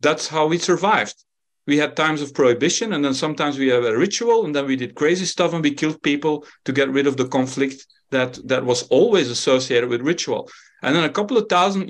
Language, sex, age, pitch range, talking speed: English, male, 50-69, 130-175 Hz, 225 wpm